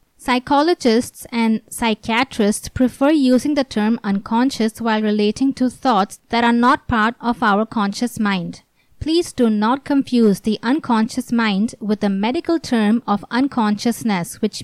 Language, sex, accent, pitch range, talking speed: English, female, Indian, 215-260 Hz, 140 wpm